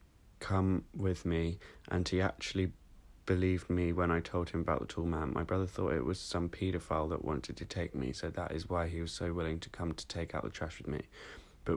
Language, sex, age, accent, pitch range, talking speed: English, male, 20-39, British, 85-95 Hz, 235 wpm